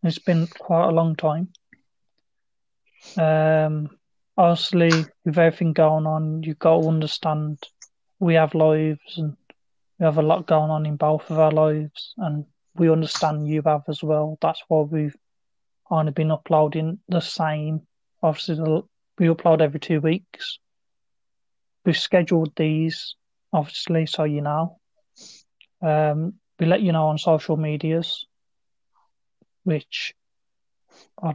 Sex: male